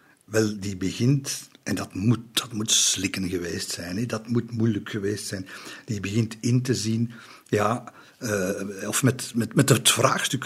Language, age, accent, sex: Dutch, 50-69, Belgian, male